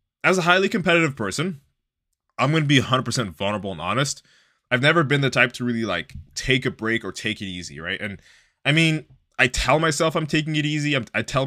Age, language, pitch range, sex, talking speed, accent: 20-39, English, 110-140 Hz, male, 220 wpm, American